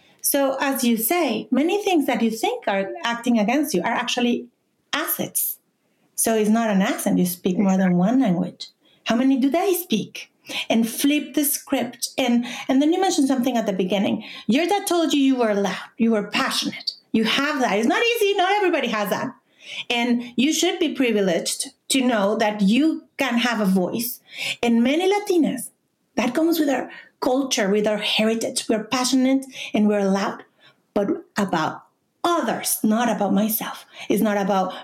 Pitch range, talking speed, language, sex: 210-280 Hz, 175 wpm, English, female